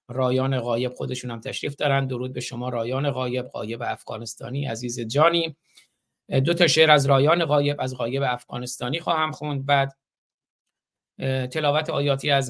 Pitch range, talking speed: 130-145 Hz, 145 wpm